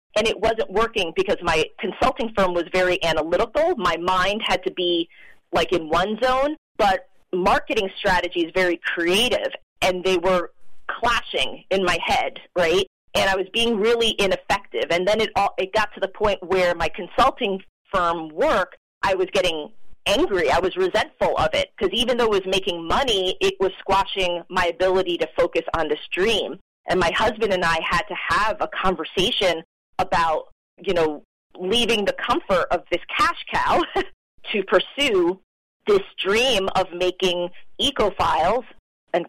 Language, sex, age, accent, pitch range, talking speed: English, female, 30-49, American, 180-220 Hz, 165 wpm